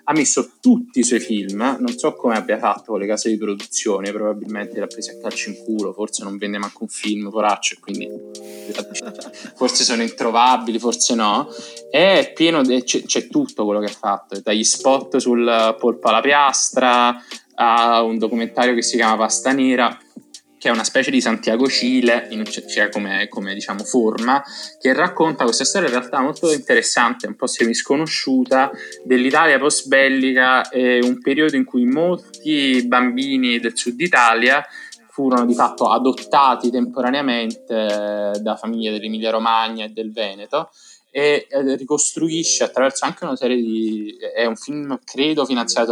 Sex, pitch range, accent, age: male, 110-130 Hz, native, 20-39